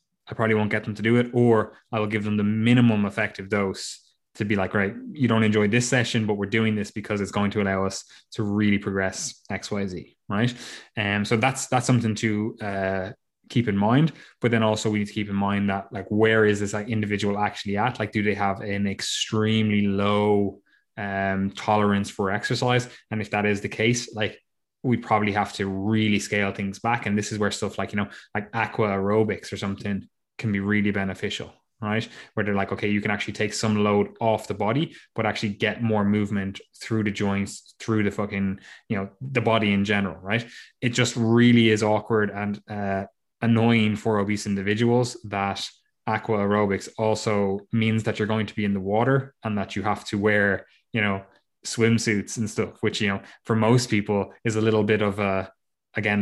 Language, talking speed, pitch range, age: English, 205 wpm, 100-110 Hz, 20-39